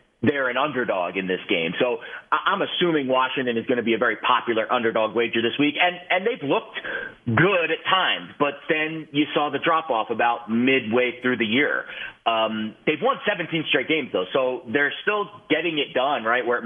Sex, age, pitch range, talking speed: male, 30-49, 115-150 Hz, 200 wpm